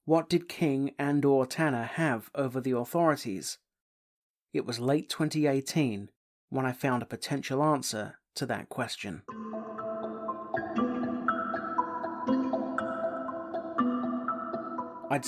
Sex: male